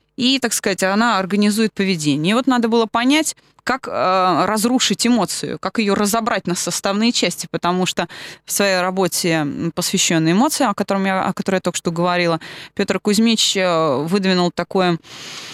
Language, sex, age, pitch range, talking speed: Russian, female, 20-39, 180-245 Hz, 160 wpm